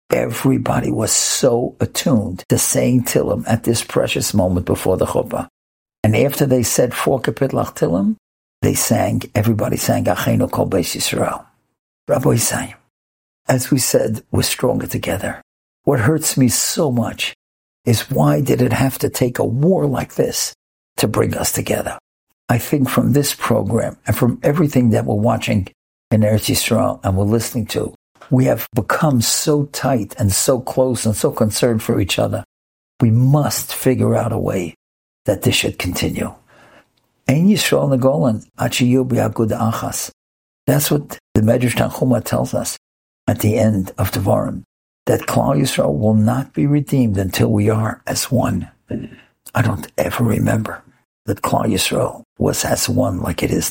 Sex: male